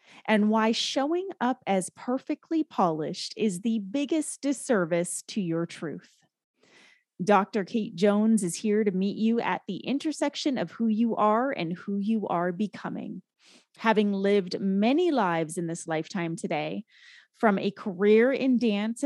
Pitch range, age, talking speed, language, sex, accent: 180-230 Hz, 30-49, 150 wpm, English, female, American